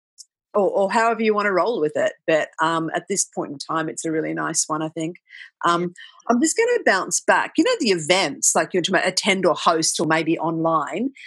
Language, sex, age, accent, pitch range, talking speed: English, female, 40-59, Australian, 160-215 Hz, 235 wpm